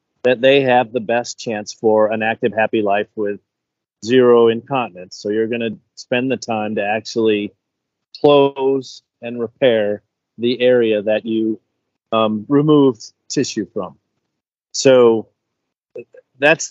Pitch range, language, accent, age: 110-135 Hz, English, American, 40-59